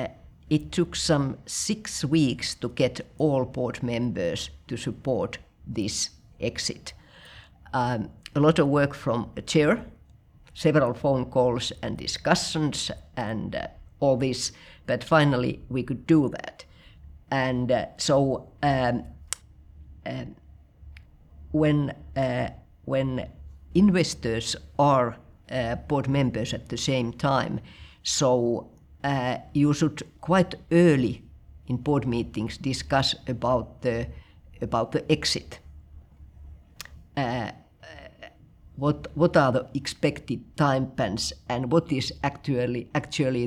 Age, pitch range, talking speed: 50-69, 110-140 Hz, 110 wpm